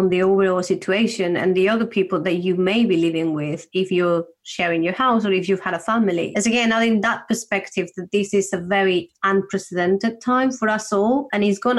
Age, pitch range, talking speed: 30-49, 180-220 Hz, 220 wpm